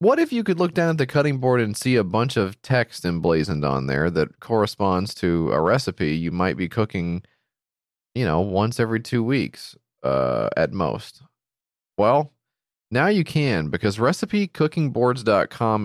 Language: English